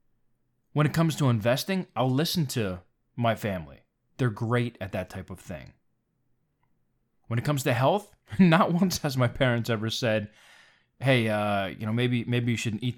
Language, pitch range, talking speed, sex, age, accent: English, 110-140 Hz, 175 wpm, male, 20-39, American